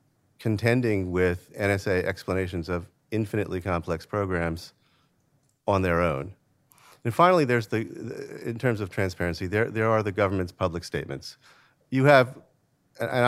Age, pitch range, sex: 40-59, 90-110 Hz, male